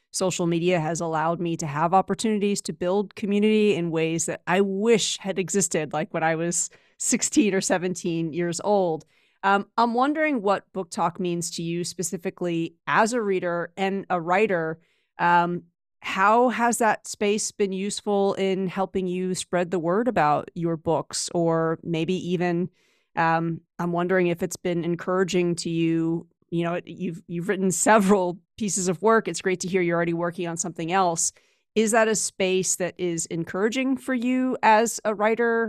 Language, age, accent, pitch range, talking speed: English, 30-49, American, 170-200 Hz, 170 wpm